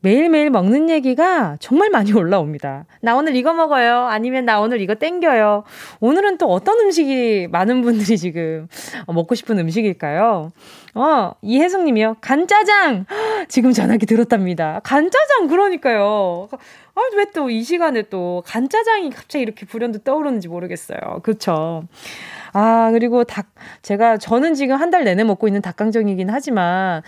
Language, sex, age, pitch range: Korean, female, 20-39, 205-310 Hz